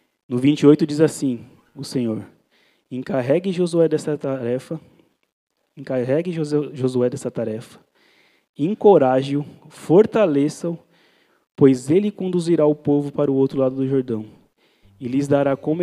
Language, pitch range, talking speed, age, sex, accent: Portuguese, 125-150 Hz, 105 wpm, 20-39, male, Brazilian